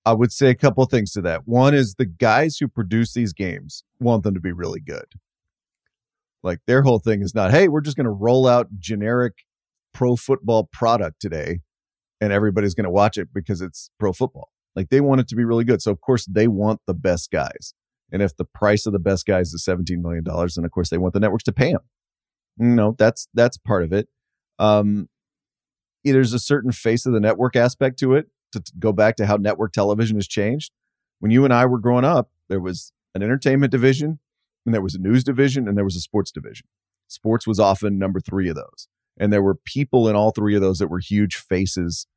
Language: English